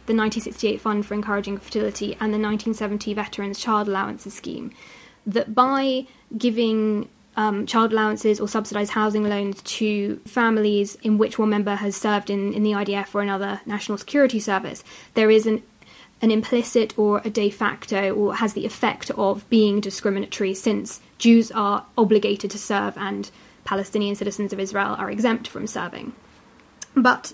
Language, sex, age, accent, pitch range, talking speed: English, female, 20-39, British, 205-230 Hz, 160 wpm